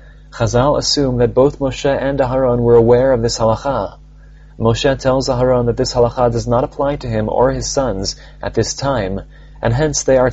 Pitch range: 115-140 Hz